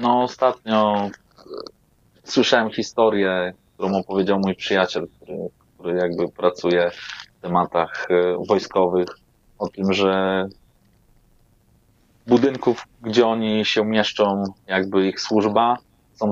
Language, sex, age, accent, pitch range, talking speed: Polish, male, 30-49, native, 95-110 Hz, 100 wpm